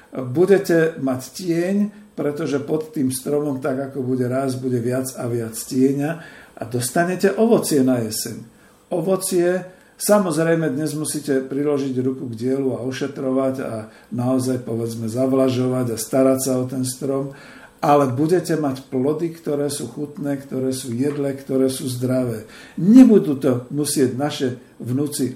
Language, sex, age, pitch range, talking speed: Slovak, male, 50-69, 125-150 Hz, 140 wpm